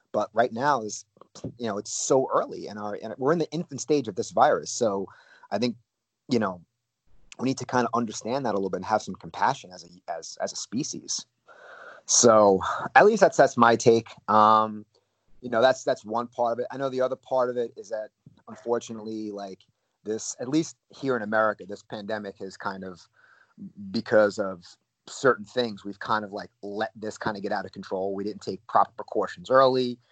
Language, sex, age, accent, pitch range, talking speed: English, male, 30-49, American, 110-140 Hz, 210 wpm